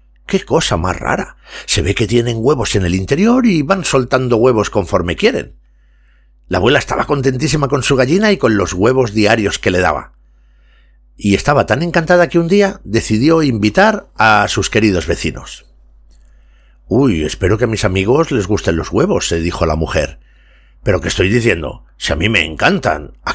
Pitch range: 85-135 Hz